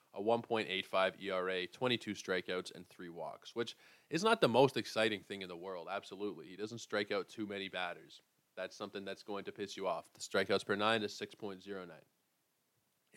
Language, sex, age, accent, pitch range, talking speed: English, male, 20-39, American, 100-125 Hz, 180 wpm